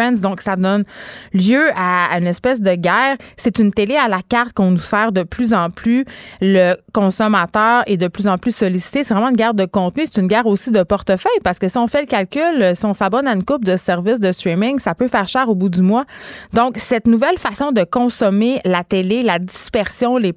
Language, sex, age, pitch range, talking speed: French, female, 30-49, 185-235 Hz, 230 wpm